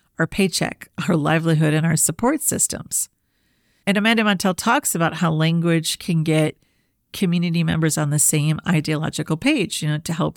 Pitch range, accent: 155-185 Hz, American